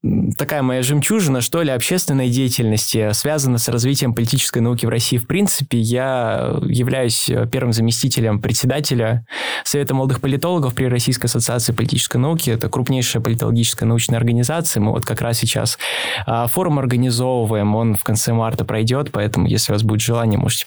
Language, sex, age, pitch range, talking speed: Russian, male, 20-39, 115-140 Hz, 155 wpm